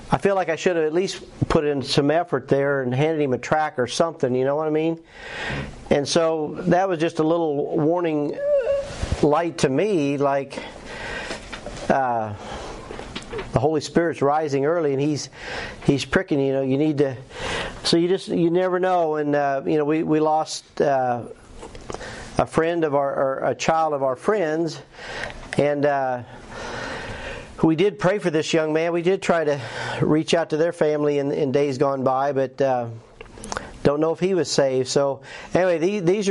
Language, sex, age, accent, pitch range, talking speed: English, male, 50-69, American, 140-170 Hz, 185 wpm